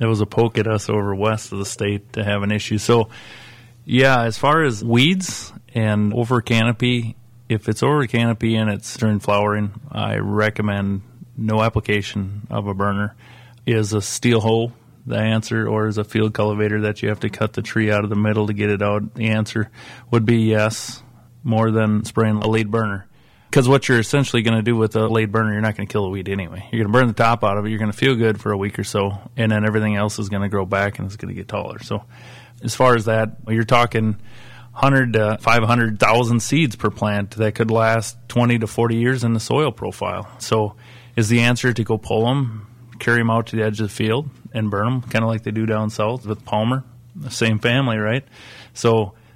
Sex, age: male, 30-49